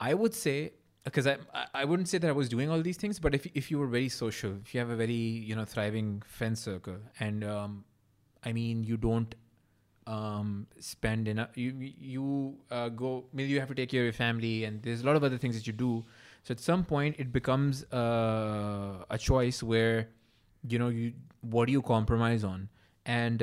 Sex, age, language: male, 20-39, English